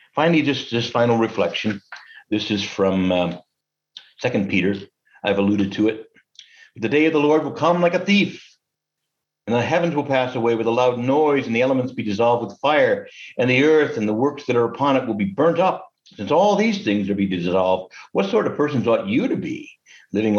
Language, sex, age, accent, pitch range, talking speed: English, male, 60-79, American, 100-145 Hz, 210 wpm